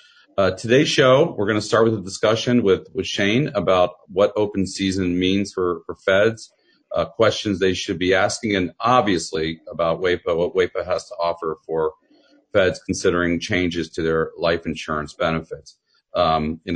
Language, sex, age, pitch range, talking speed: English, male, 40-59, 85-105 Hz, 170 wpm